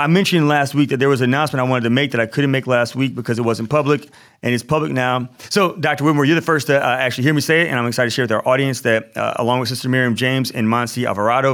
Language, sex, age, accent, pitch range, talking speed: English, male, 30-49, American, 105-130 Hz, 300 wpm